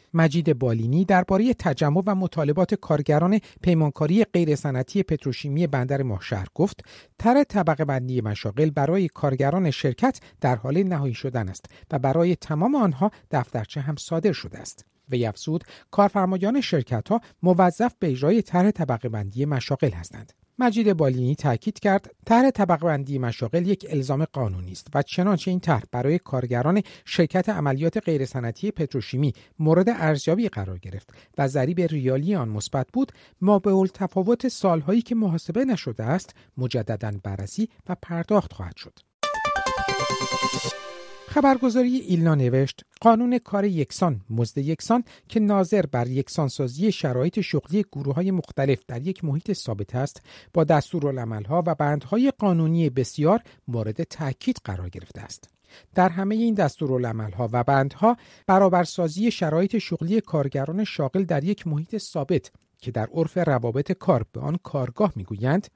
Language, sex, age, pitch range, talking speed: Persian, male, 50-69, 130-195 Hz, 135 wpm